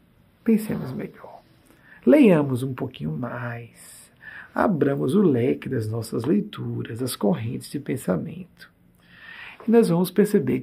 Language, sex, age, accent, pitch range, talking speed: Portuguese, male, 60-79, Brazilian, 125-205 Hz, 115 wpm